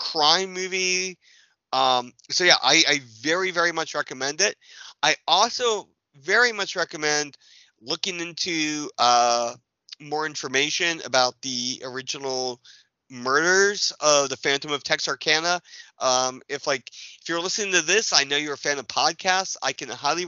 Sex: male